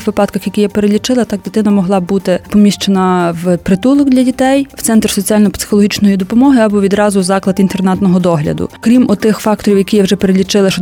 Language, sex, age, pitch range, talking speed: Ukrainian, female, 20-39, 190-220 Hz, 170 wpm